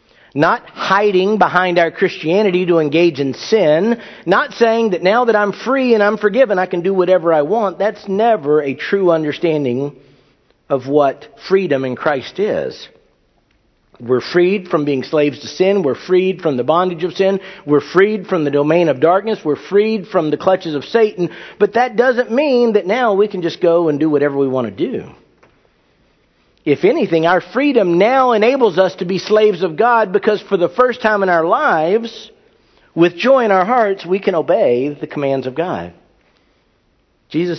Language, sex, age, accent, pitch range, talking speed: English, male, 50-69, American, 150-210 Hz, 180 wpm